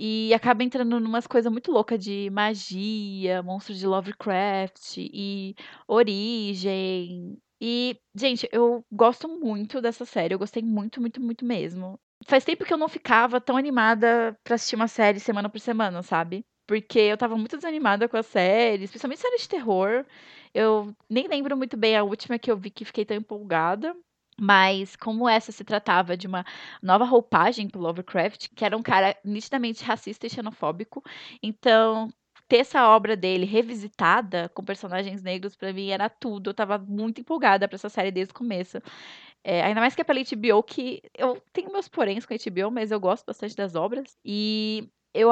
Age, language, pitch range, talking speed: 20-39, Portuguese, 195-235 Hz, 175 wpm